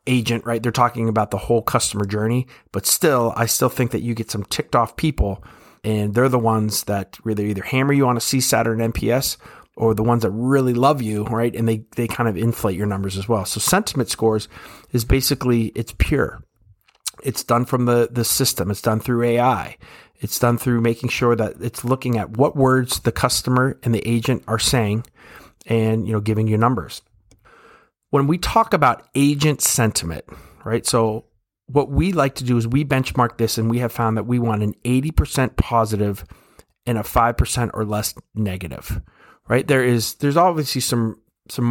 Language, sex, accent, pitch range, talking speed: English, male, American, 110-125 Hz, 195 wpm